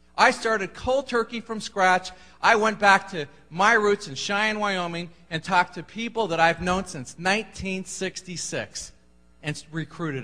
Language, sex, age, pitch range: Thai, male, 40-59, 130-205 Hz